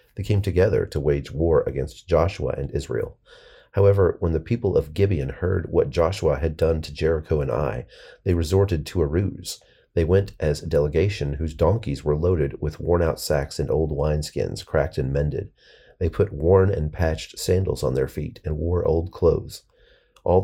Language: English